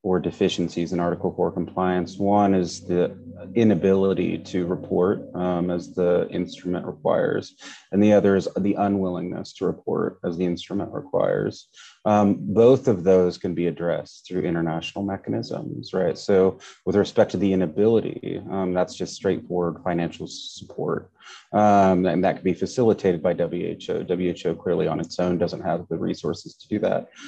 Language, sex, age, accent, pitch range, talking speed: English, male, 30-49, American, 85-95 Hz, 160 wpm